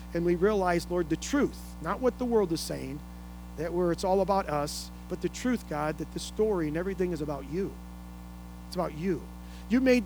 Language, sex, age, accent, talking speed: English, male, 40-59, American, 210 wpm